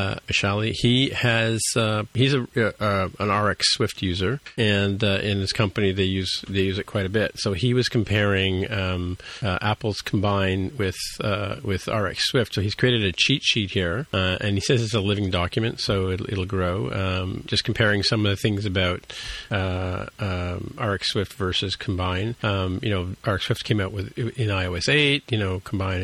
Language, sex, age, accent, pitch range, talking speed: English, male, 40-59, American, 100-115 Hz, 195 wpm